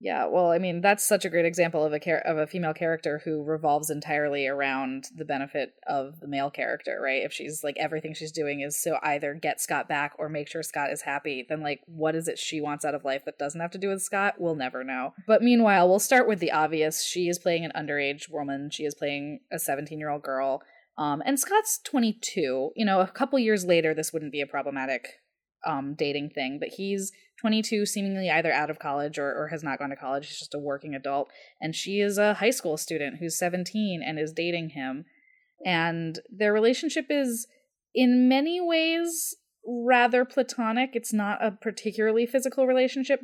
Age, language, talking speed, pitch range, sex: 20-39, English, 210 wpm, 150-210 Hz, female